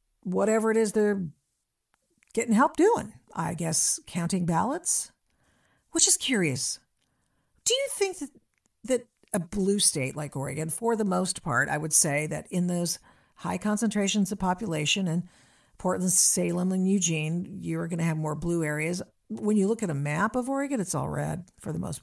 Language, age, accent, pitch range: English, 50-69, American, 165-220 Hz